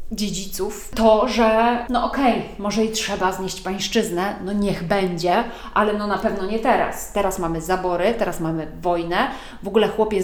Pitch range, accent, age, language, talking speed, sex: 195-230 Hz, native, 30-49, Polish, 165 wpm, female